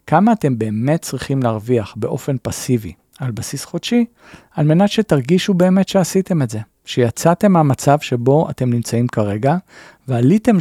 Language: Hebrew